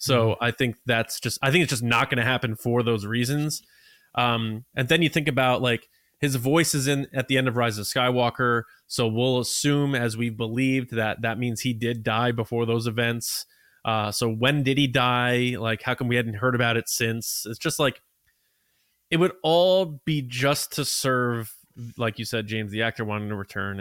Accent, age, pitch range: American, 20-39, 115-145 Hz